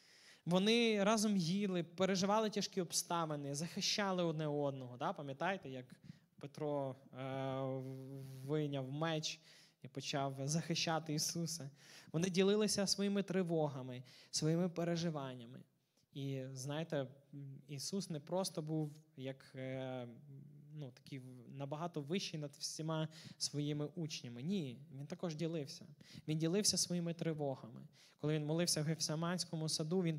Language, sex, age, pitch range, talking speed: Ukrainian, male, 20-39, 140-170 Hz, 110 wpm